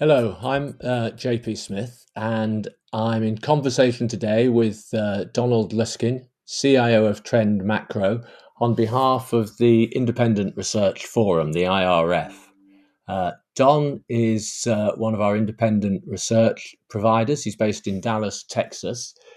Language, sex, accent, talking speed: English, male, British, 130 wpm